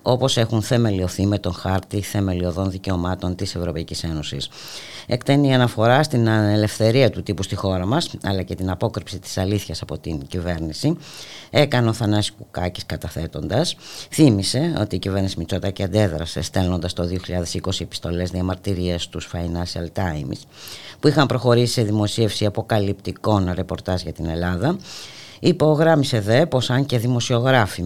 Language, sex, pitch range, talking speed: Greek, female, 90-120 Hz, 140 wpm